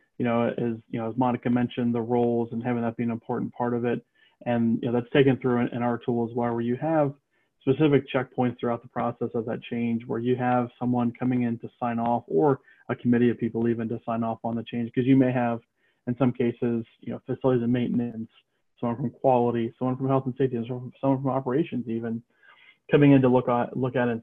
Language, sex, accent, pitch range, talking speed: English, male, American, 115-125 Hz, 235 wpm